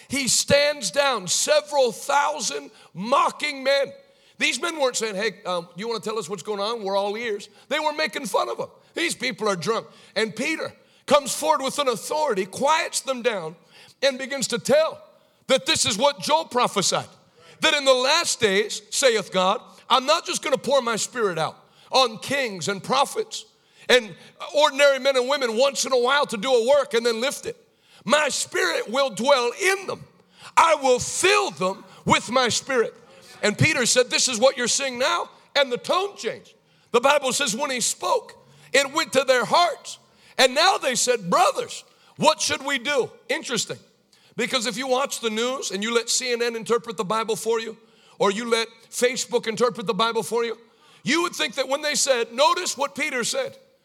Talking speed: 195 wpm